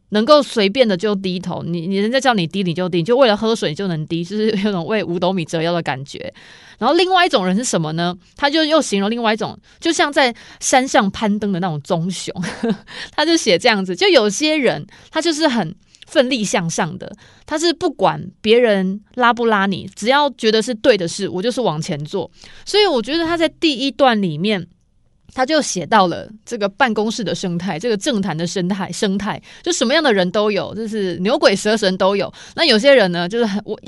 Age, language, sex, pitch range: 20-39, Chinese, female, 180-245 Hz